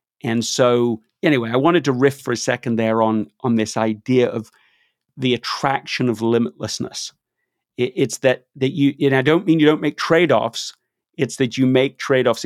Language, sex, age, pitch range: English, male, 40-59, 115-140 Hz